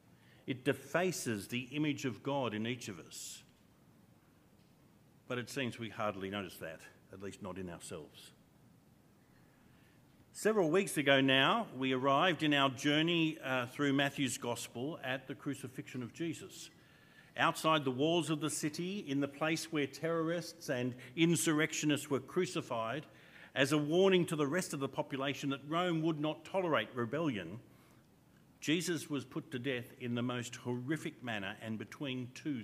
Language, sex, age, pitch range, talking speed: English, male, 50-69, 120-155 Hz, 155 wpm